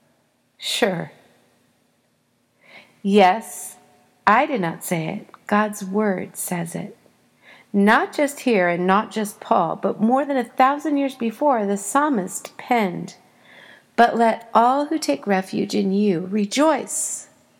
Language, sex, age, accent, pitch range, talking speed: English, female, 40-59, American, 190-255 Hz, 125 wpm